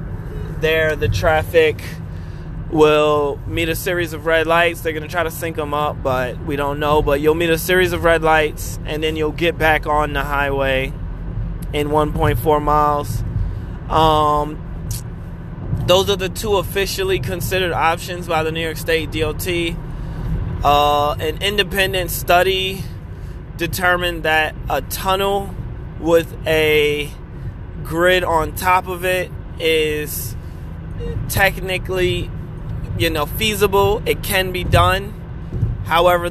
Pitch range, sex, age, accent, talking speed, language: 140-170 Hz, male, 20-39, American, 130 wpm, English